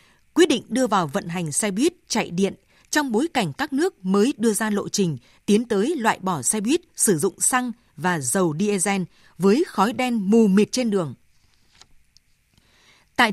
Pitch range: 180-235 Hz